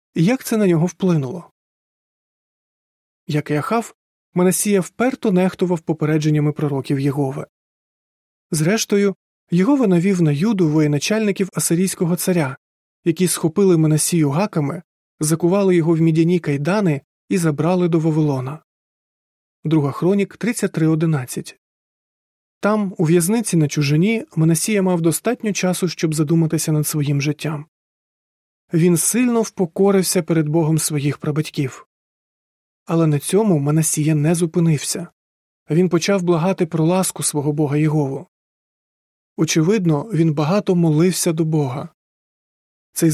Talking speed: 110 wpm